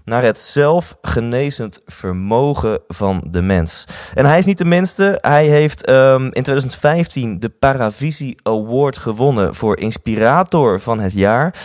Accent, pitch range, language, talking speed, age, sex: Dutch, 95-140 Hz, Dutch, 135 wpm, 20-39, male